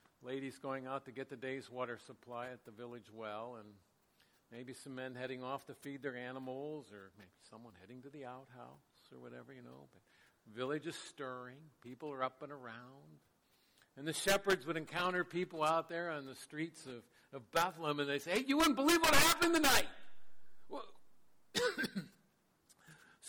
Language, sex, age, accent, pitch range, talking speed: English, male, 60-79, American, 125-160 Hz, 175 wpm